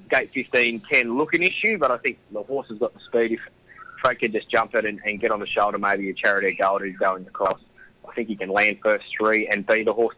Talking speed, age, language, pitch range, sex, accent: 265 wpm, 20-39, German, 105-125 Hz, male, Australian